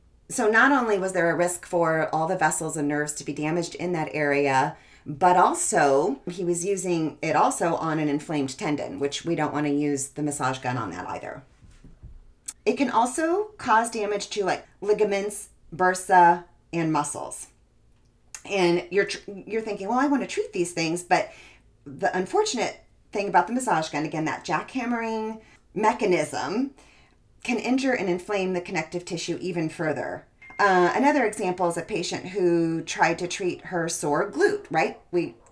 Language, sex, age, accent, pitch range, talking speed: English, female, 40-59, American, 155-205 Hz, 170 wpm